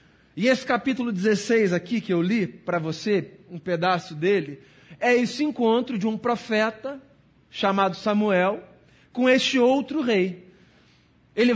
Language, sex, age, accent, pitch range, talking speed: Portuguese, male, 40-59, Brazilian, 195-250 Hz, 135 wpm